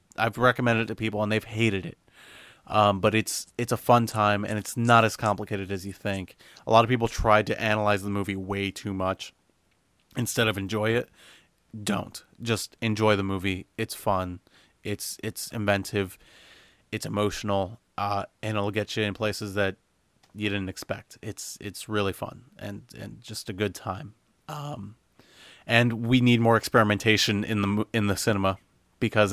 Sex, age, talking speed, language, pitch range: male, 30-49, 175 wpm, English, 100-120 Hz